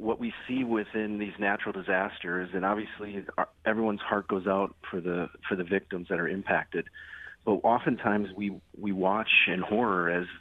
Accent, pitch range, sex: American, 90-105 Hz, male